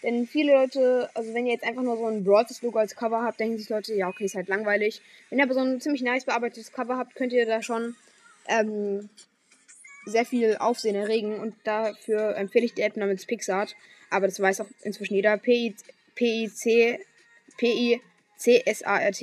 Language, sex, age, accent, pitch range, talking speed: German, female, 20-39, German, 215-260 Hz, 180 wpm